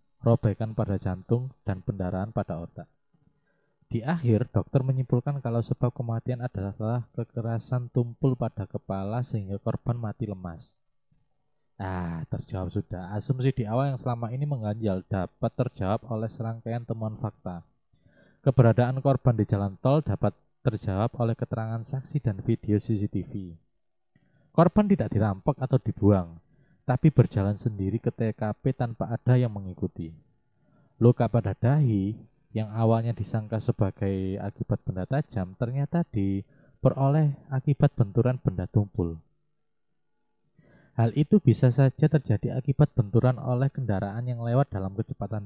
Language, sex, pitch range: Indonesian, male, 105-135 Hz